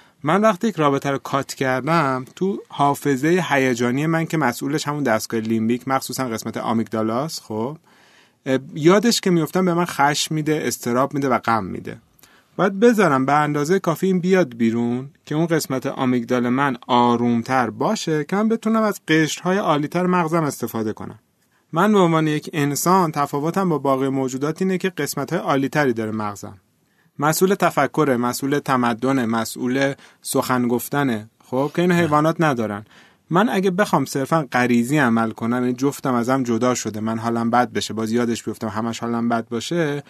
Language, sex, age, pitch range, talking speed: Persian, male, 30-49, 120-165 Hz, 155 wpm